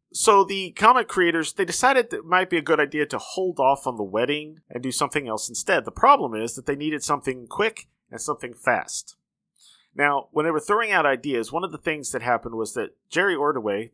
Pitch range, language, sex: 130-190 Hz, English, male